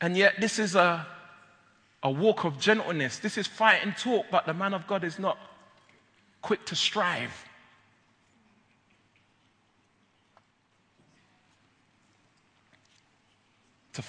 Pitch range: 115-150 Hz